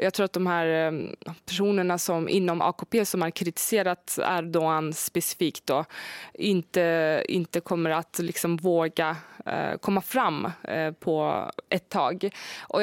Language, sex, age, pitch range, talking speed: Swedish, female, 20-39, 165-195 Hz, 125 wpm